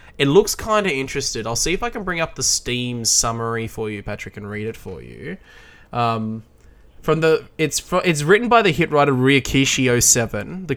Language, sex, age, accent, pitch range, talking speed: English, male, 20-39, Australian, 120-165 Hz, 200 wpm